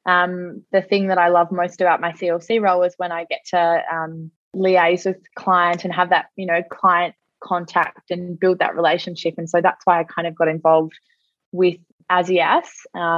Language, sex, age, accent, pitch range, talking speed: English, female, 20-39, Australian, 170-195 Hz, 190 wpm